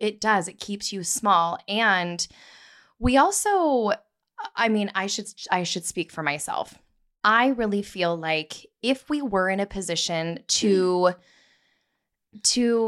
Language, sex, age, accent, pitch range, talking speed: English, female, 10-29, American, 175-225 Hz, 130 wpm